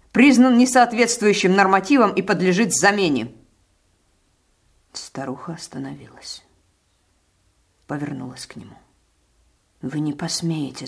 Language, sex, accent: Russian, female, native